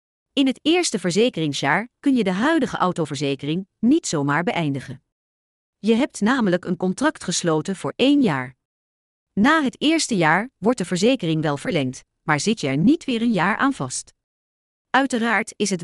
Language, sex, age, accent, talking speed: English, female, 40-59, Dutch, 165 wpm